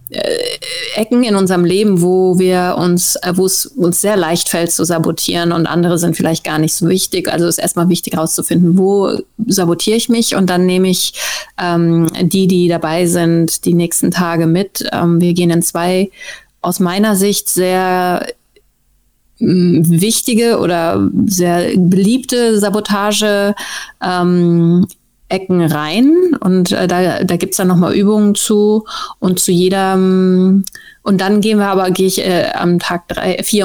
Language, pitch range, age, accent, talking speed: German, 175-195 Hz, 30-49, German, 155 wpm